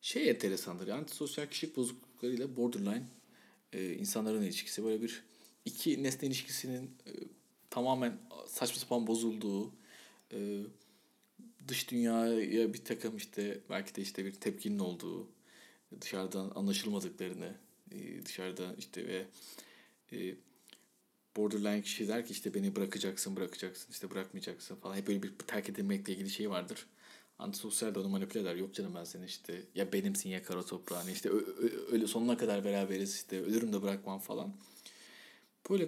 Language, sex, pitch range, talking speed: Turkish, male, 100-140 Hz, 140 wpm